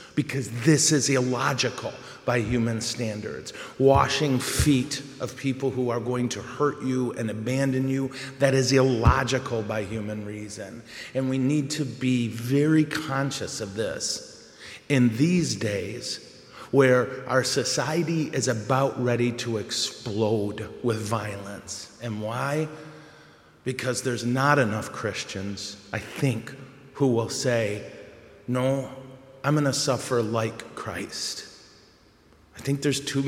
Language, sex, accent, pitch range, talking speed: English, male, American, 110-135 Hz, 130 wpm